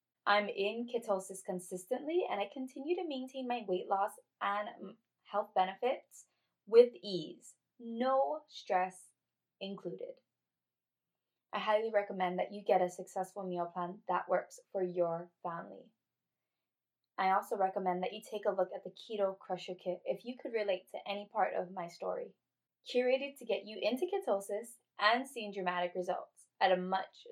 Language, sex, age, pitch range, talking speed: English, female, 20-39, 180-220 Hz, 155 wpm